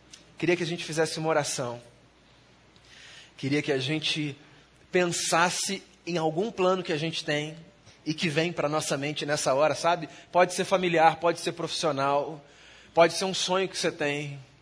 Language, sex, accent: Portuguese, male, Brazilian